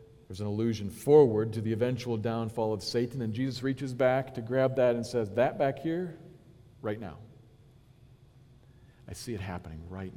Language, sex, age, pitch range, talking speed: English, male, 50-69, 110-125 Hz, 170 wpm